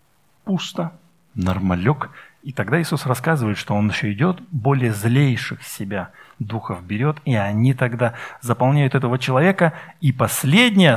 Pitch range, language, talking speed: 115-150 Hz, Russian, 125 wpm